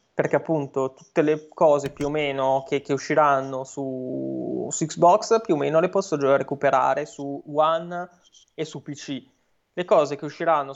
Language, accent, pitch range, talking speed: Italian, native, 135-155 Hz, 165 wpm